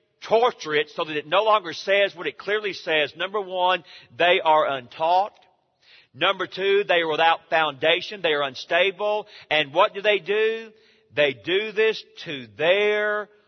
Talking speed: 160 wpm